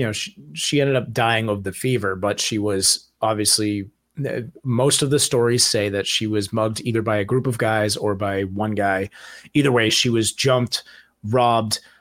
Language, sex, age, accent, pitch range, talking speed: English, male, 30-49, American, 105-130 Hz, 185 wpm